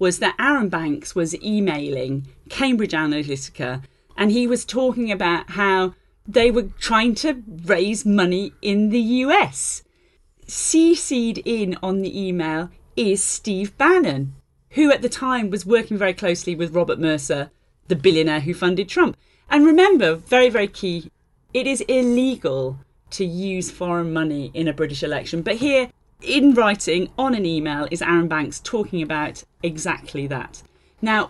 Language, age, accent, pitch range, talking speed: English, 40-59, British, 155-235 Hz, 150 wpm